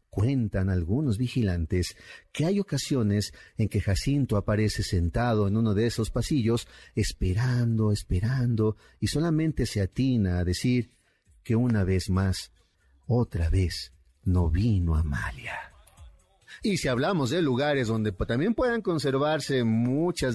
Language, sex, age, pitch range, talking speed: Spanish, male, 50-69, 95-135 Hz, 125 wpm